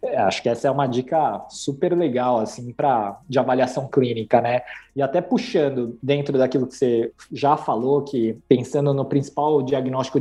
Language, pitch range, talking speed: Portuguese, 130-150 Hz, 170 wpm